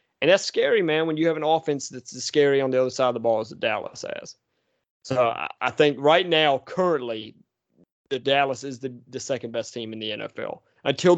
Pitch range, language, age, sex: 110-130 Hz, English, 30-49, male